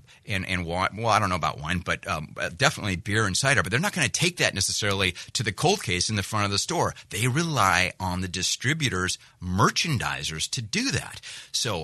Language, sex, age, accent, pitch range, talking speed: English, male, 30-49, American, 95-130 Hz, 215 wpm